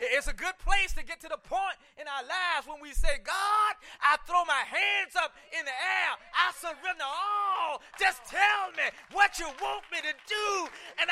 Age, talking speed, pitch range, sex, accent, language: 30-49, 200 wpm, 300-400 Hz, male, American, English